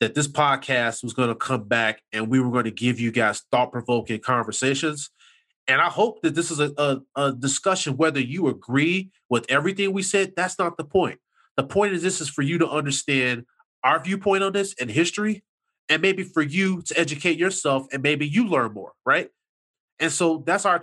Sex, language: male, English